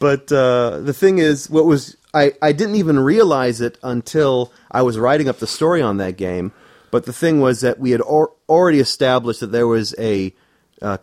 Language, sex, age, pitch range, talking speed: English, male, 30-49, 105-150 Hz, 205 wpm